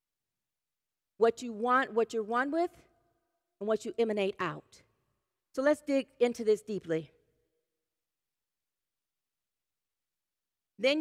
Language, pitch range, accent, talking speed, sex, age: English, 205-280 Hz, American, 105 wpm, female, 50-69